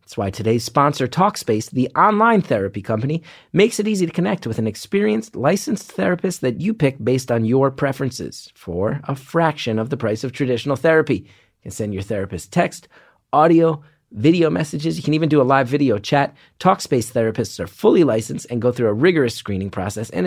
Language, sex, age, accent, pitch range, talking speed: English, male, 30-49, American, 115-155 Hz, 190 wpm